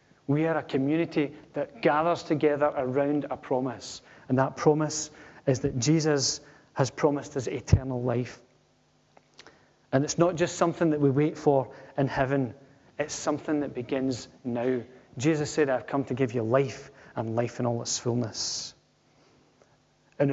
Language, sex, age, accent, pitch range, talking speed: English, male, 30-49, British, 130-150 Hz, 155 wpm